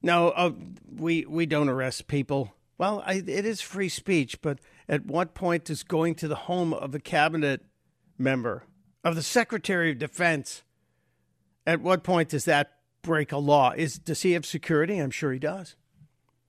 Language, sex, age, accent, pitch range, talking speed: English, male, 50-69, American, 145-175 Hz, 175 wpm